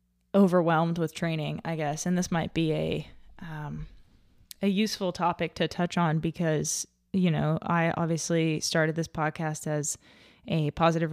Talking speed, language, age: 150 wpm, English, 20-39